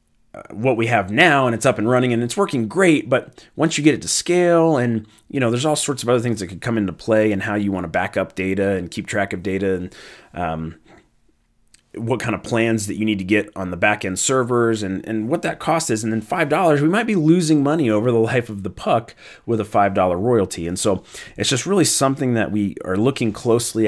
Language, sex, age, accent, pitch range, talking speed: English, male, 30-49, American, 100-125 Hz, 250 wpm